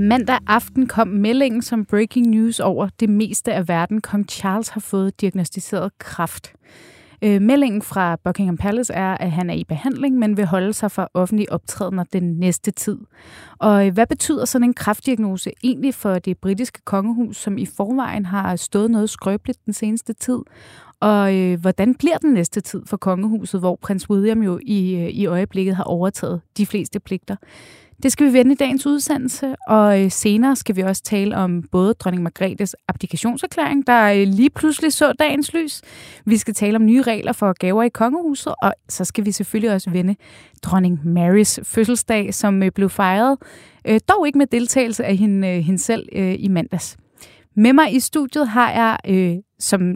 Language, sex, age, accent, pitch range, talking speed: Danish, female, 30-49, native, 190-245 Hz, 170 wpm